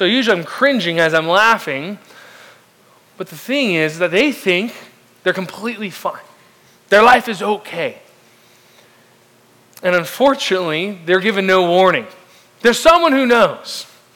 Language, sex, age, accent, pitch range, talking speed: English, male, 20-39, American, 170-225 Hz, 130 wpm